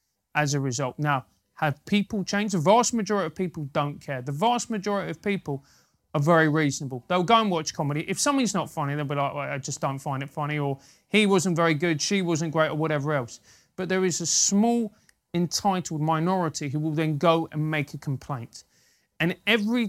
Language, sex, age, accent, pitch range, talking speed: English, male, 30-49, British, 145-185 Hz, 205 wpm